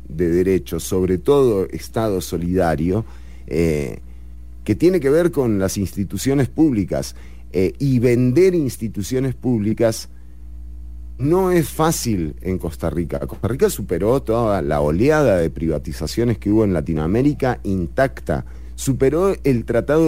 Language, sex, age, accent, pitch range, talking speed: English, male, 40-59, Argentinian, 80-125 Hz, 125 wpm